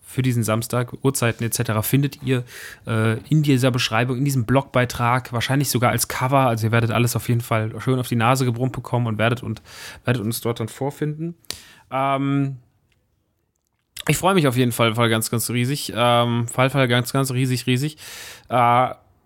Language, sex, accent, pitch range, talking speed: German, male, German, 115-130 Hz, 180 wpm